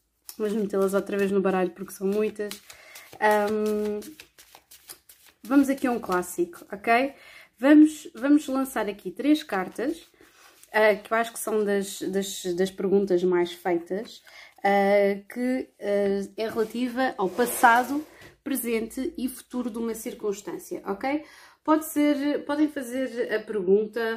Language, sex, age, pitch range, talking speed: Portuguese, female, 20-39, 195-260 Hz, 135 wpm